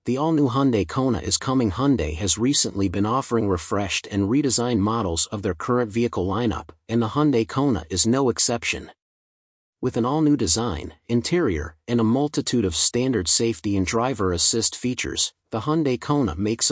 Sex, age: male, 40-59